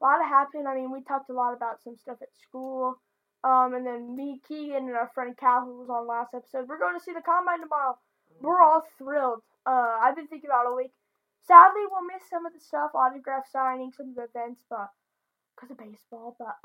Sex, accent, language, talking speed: female, American, English, 235 wpm